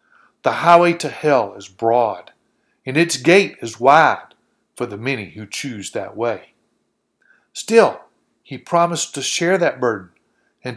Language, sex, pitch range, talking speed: English, male, 120-180 Hz, 145 wpm